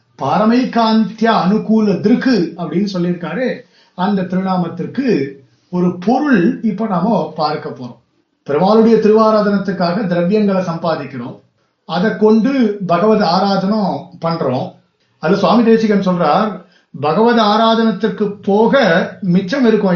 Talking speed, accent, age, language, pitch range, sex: 95 wpm, native, 50-69, Tamil, 180-230 Hz, male